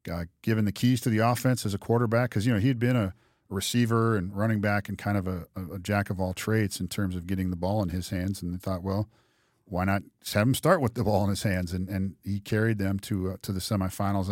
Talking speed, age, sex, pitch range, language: 265 wpm, 40-59, male, 95-115 Hz, English